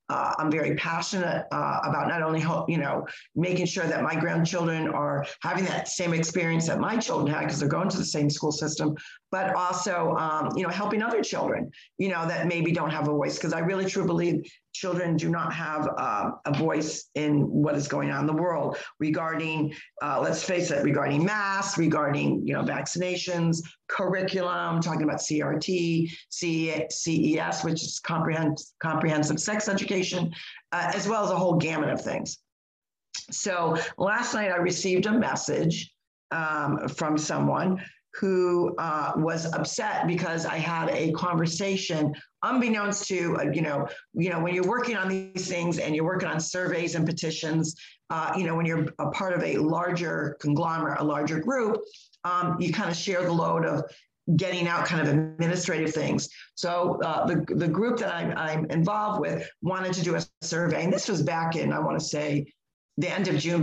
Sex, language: female, English